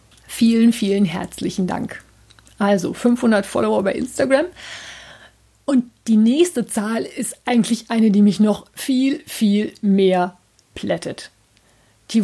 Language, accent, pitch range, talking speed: German, German, 195-245 Hz, 120 wpm